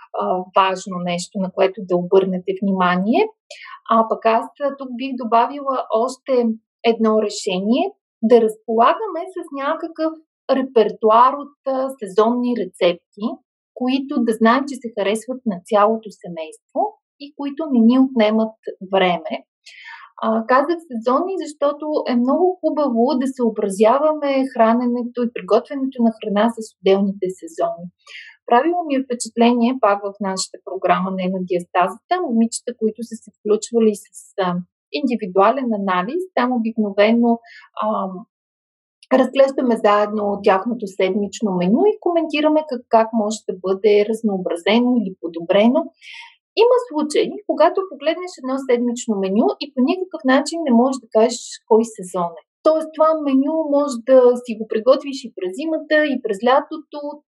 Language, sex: Bulgarian, female